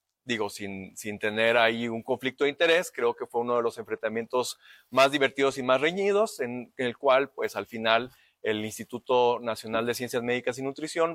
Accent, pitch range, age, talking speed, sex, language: Mexican, 115-155 Hz, 30-49, 195 wpm, male, Spanish